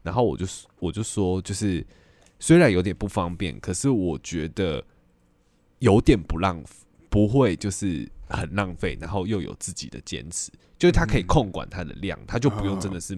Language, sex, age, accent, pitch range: Chinese, male, 20-39, native, 85-105 Hz